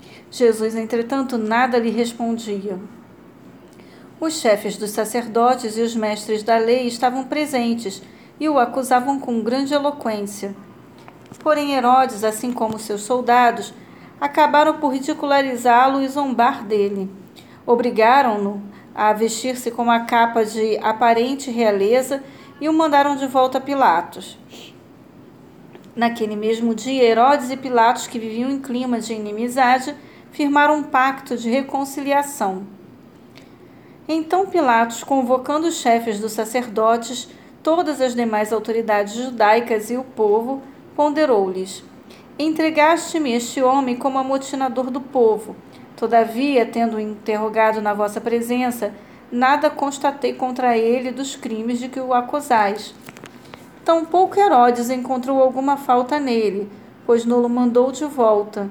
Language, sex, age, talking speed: Portuguese, female, 40-59, 120 wpm